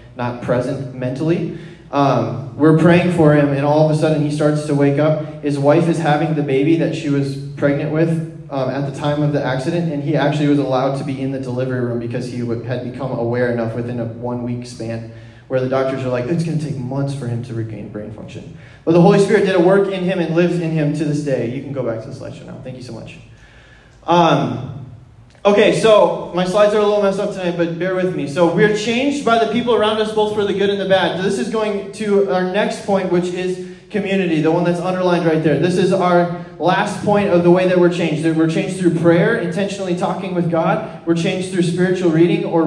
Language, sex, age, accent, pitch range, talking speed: English, male, 20-39, American, 140-180 Hz, 245 wpm